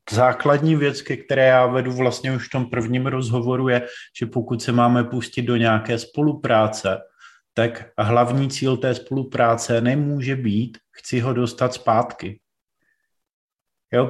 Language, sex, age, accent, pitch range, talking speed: Czech, male, 30-49, native, 115-135 Hz, 140 wpm